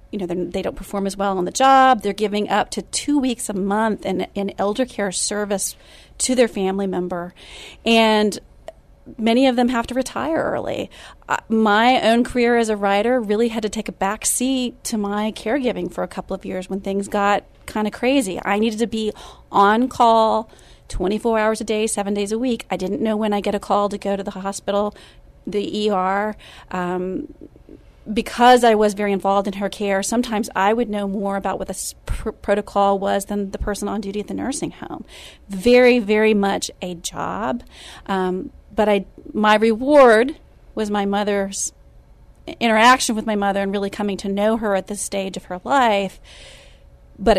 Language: English